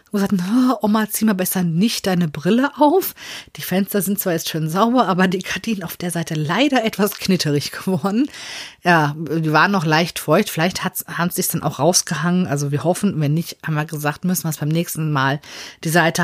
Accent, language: German, Finnish